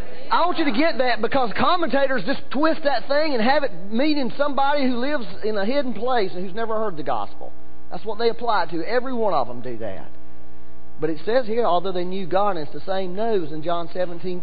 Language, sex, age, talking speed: English, male, 40-59, 235 wpm